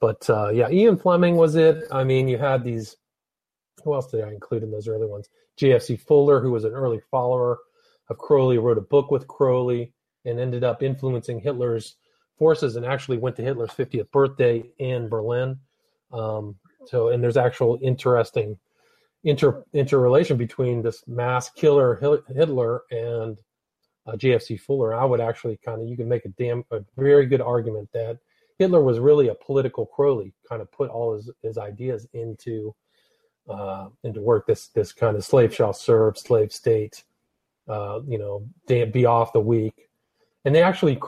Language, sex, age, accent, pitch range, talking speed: English, male, 40-59, American, 115-155 Hz, 170 wpm